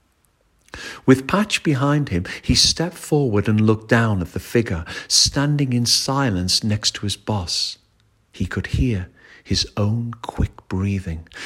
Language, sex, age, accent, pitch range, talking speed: English, male, 50-69, British, 95-130 Hz, 140 wpm